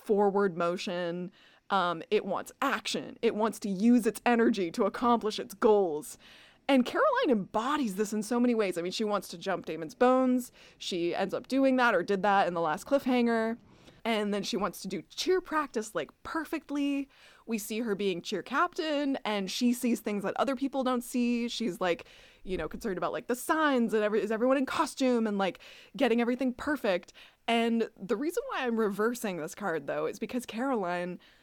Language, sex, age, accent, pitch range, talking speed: English, female, 20-39, American, 190-245 Hz, 195 wpm